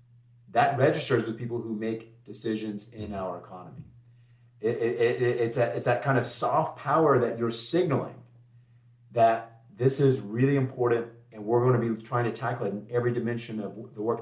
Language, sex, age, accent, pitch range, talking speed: English, male, 30-49, American, 110-125 Hz, 170 wpm